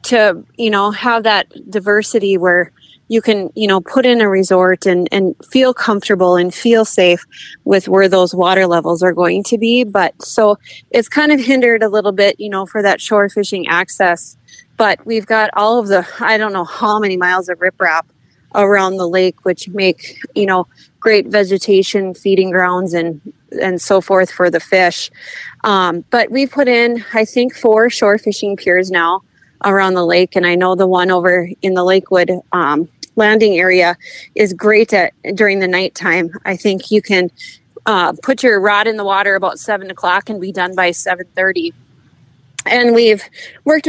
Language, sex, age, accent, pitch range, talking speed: English, female, 30-49, American, 180-220 Hz, 185 wpm